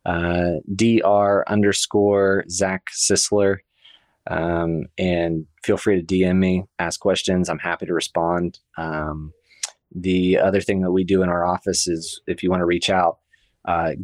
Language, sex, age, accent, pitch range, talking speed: English, male, 20-39, American, 85-100 Hz, 155 wpm